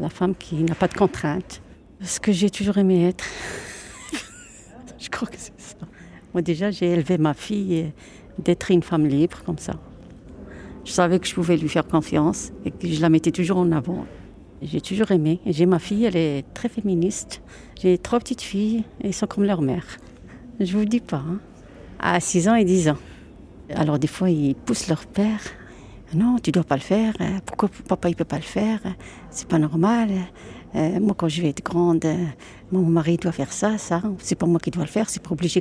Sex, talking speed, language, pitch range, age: female, 220 wpm, French, 165-210 Hz, 60-79